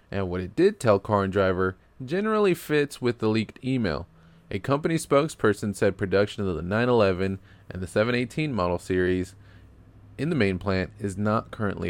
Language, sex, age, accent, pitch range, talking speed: English, male, 20-39, American, 95-120 Hz, 170 wpm